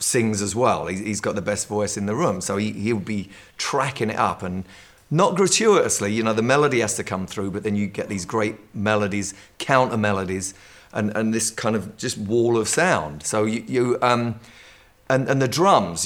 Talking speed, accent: 200 wpm, British